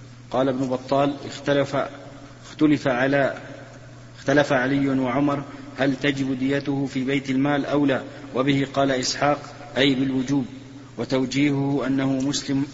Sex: male